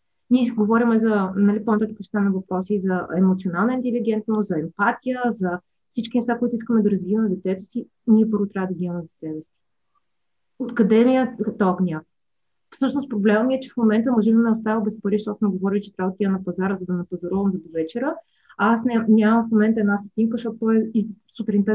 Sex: female